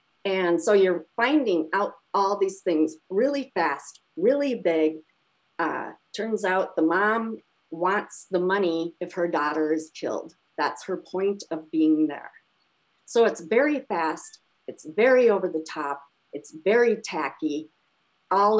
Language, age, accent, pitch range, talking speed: English, 50-69, American, 165-220 Hz, 140 wpm